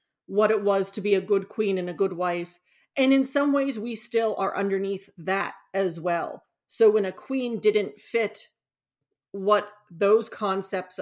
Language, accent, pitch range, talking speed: English, American, 195-235 Hz, 175 wpm